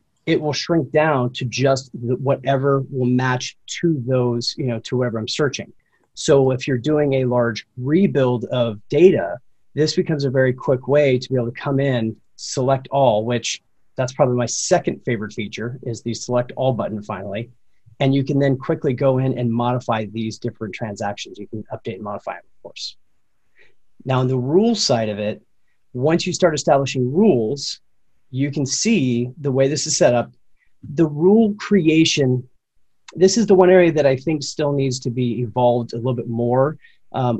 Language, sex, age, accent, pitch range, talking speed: English, male, 30-49, American, 120-145 Hz, 185 wpm